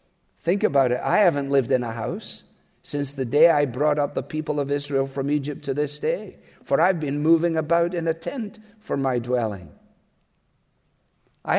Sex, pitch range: male, 135-195 Hz